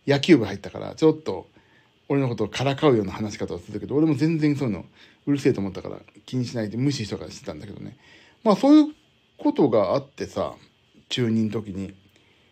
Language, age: Japanese, 60-79